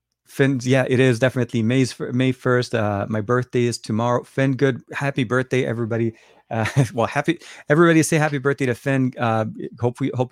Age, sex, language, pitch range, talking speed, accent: 30-49, male, English, 105-130 Hz, 180 wpm, American